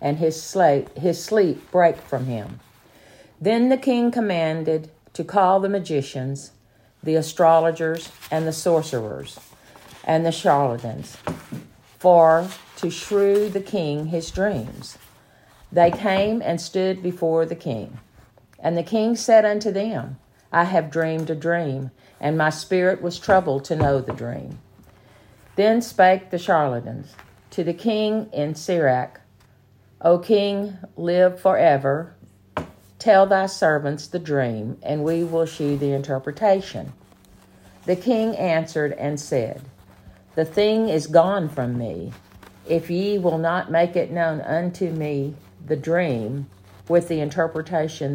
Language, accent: English, American